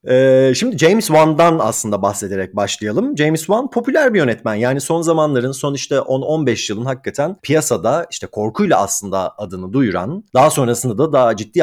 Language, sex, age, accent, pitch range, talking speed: Turkish, male, 40-59, native, 120-160 Hz, 160 wpm